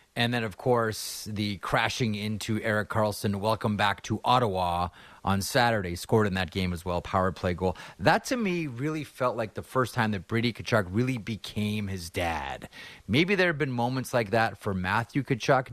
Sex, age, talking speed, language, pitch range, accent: male, 30-49, 190 wpm, English, 100-130 Hz, American